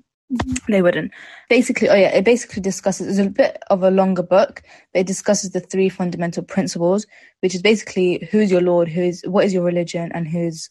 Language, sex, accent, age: English, female, British, 20-39